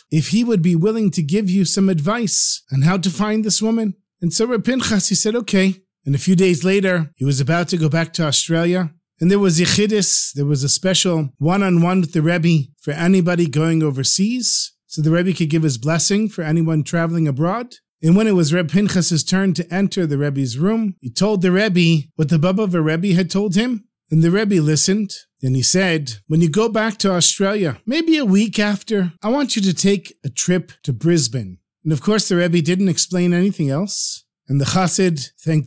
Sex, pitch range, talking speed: male, 160-195 Hz, 210 wpm